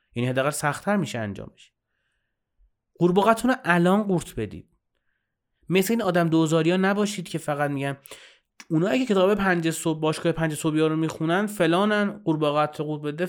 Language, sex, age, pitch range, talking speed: Persian, male, 30-49, 140-180 Hz, 160 wpm